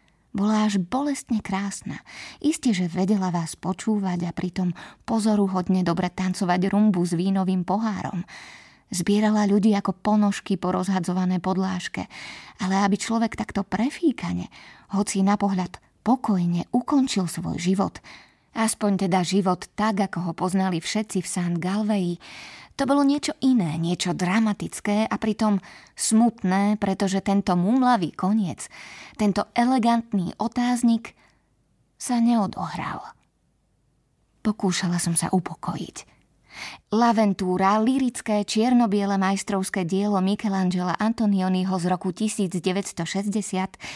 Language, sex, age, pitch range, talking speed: Slovak, female, 20-39, 185-220 Hz, 110 wpm